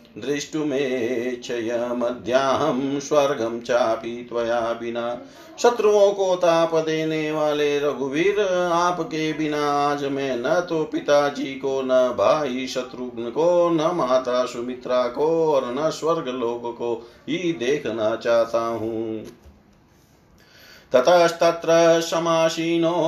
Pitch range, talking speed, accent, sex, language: 115-155 Hz, 100 wpm, native, male, Hindi